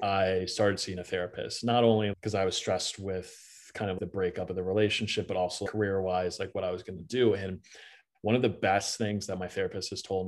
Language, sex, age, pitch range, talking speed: English, male, 20-39, 95-110 Hz, 240 wpm